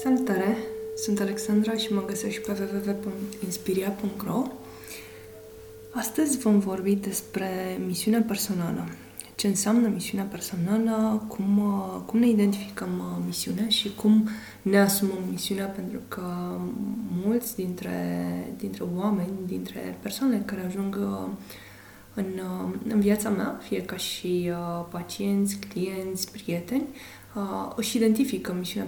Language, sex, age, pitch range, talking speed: Romanian, female, 20-39, 180-220 Hz, 110 wpm